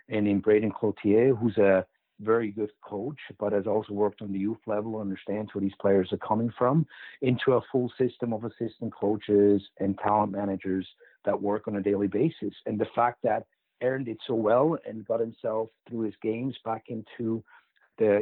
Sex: male